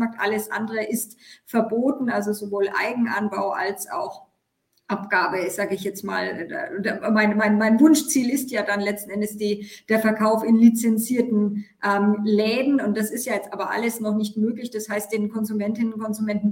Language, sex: English, female